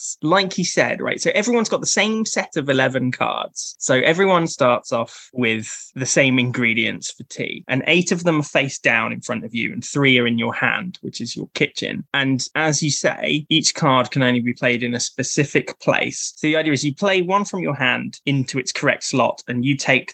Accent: British